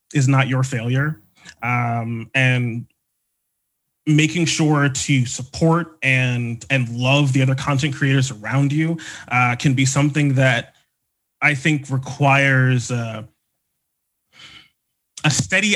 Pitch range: 125-150 Hz